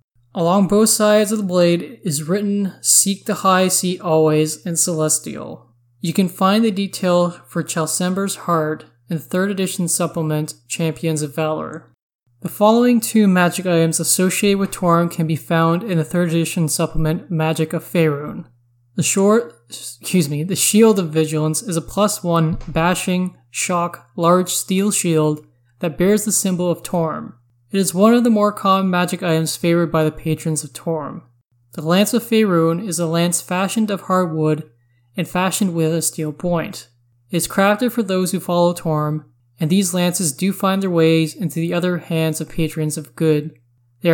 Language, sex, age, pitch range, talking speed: English, male, 20-39, 155-185 Hz, 175 wpm